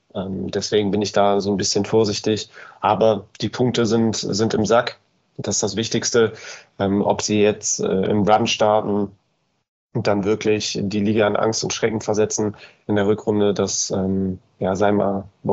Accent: German